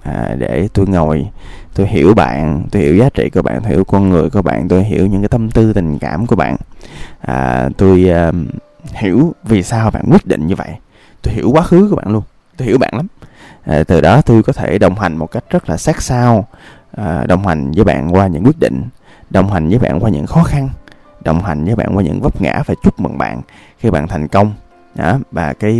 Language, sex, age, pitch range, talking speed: Vietnamese, male, 20-39, 85-115 Hz, 235 wpm